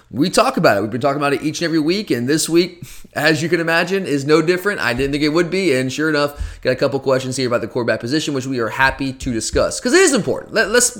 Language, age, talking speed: English, 20-39, 285 wpm